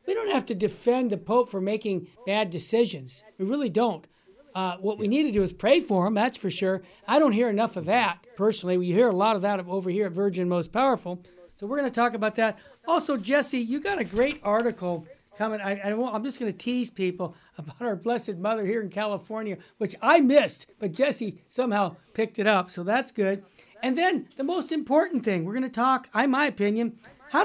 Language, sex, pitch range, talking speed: English, male, 195-255 Hz, 220 wpm